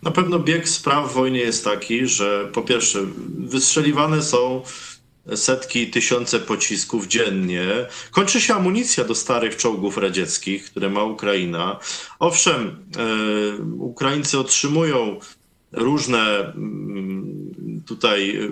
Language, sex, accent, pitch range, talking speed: Polish, male, native, 110-155 Hz, 105 wpm